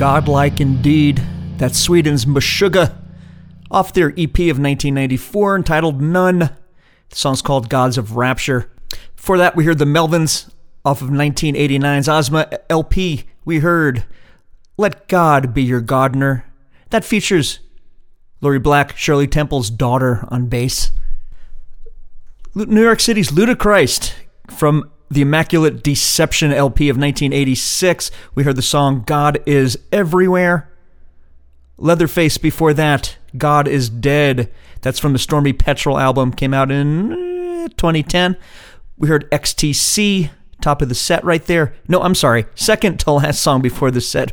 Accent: American